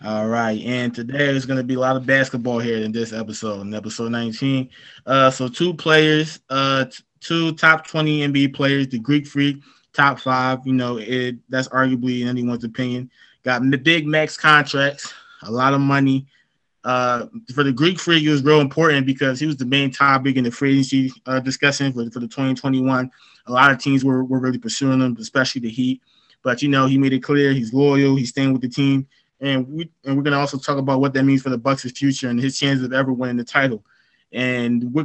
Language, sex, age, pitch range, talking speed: English, male, 20-39, 130-145 Hz, 220 wpm